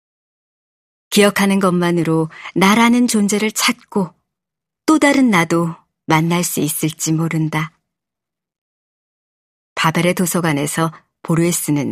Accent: native